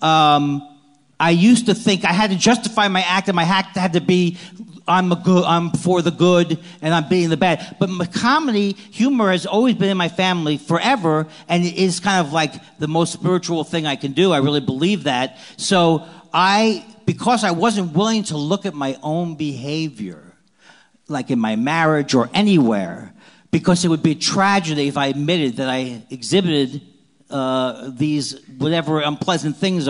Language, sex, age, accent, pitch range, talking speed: English, male, 50-69, American, 155-195 Hz, 185 wpm